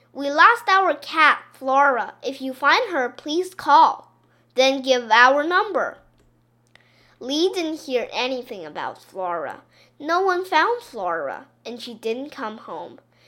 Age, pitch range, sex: 10-29, 240-345 Hz, female